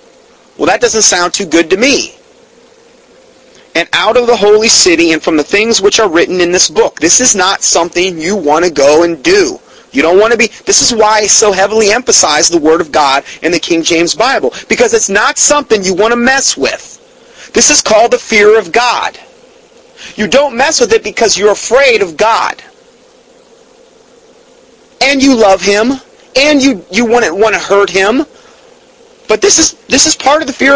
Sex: male